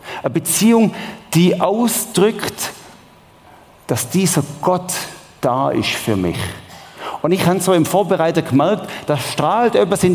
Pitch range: 130-175 Hz